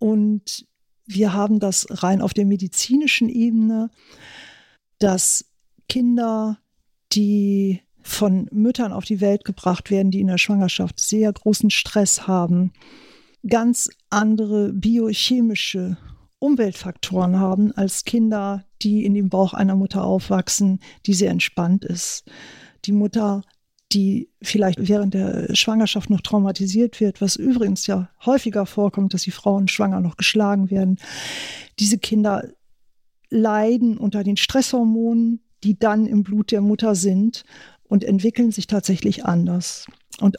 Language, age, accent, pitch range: German, 50-69, German, 195-225 Hz